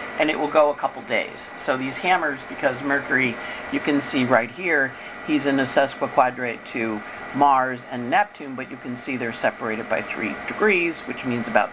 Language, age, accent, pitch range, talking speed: English, 50-69, American, 130-195 Hz, 190 wpm